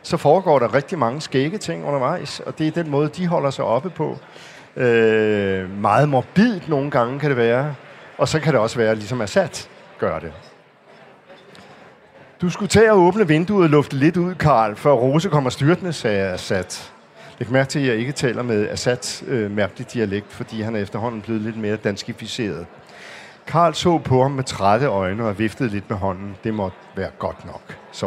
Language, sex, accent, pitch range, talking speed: Danish, male, native, 115-150 Hz, 200 wpm